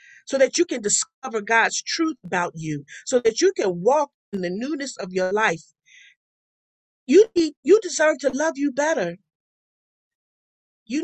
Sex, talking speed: female, 160 wpm